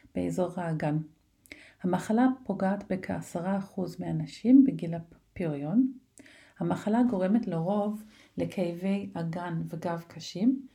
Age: 40-59